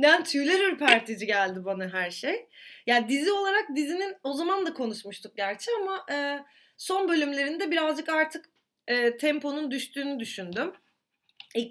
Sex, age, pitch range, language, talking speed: female, 30-49, 215-340 Hz, Turkish, 145 wpm